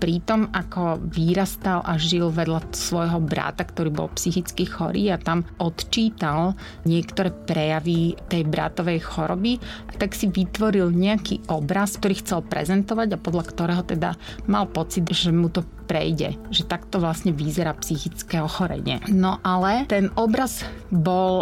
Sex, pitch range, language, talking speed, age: female, 170-195 Hz, Slovak, 135 wpm, 30-49